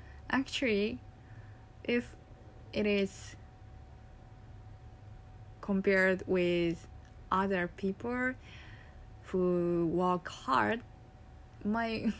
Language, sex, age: Japanese, female, 10-29